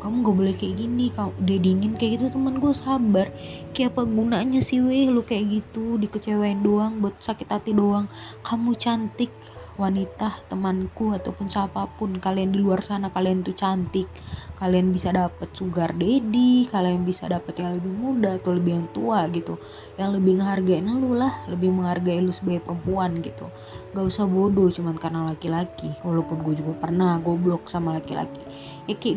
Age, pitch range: 20-39, 180-235 Hz